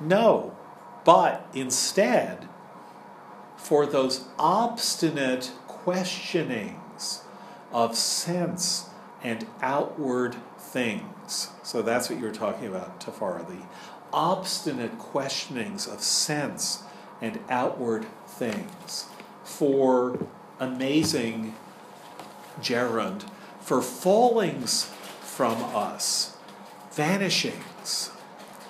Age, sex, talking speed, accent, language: 50-69, male, 70 wpm, American, English